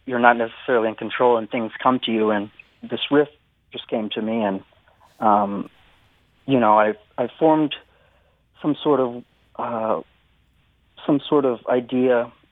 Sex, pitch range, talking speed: male, 105-125 Hz, 155 wpm